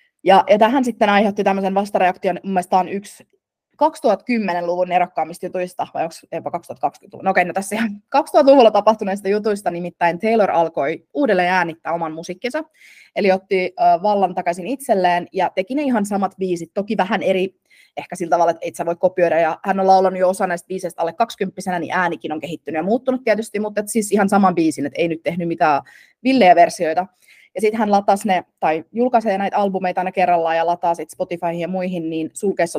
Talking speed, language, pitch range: 185 wpm, Finnish, 175-215 Hz